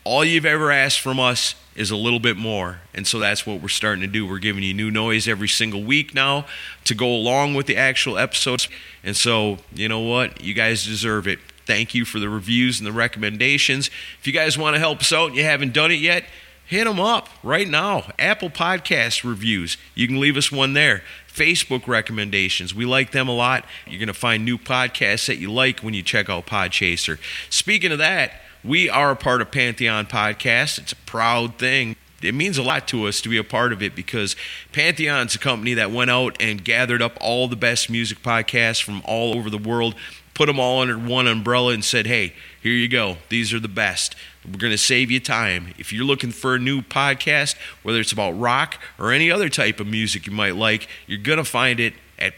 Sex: male